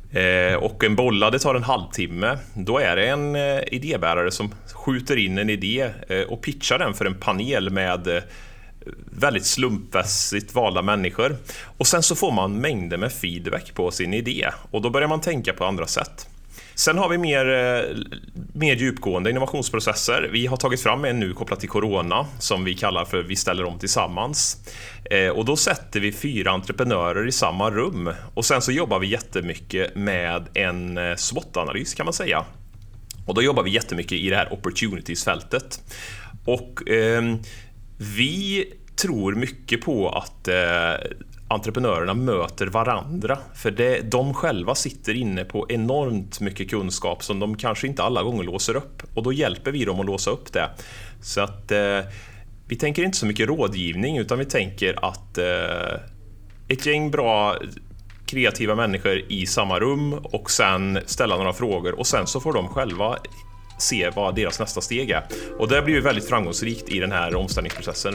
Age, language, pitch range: 30-49, Swedish, 95-125 Hz